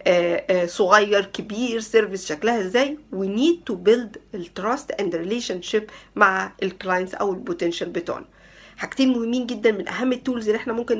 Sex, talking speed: female, 140 wpm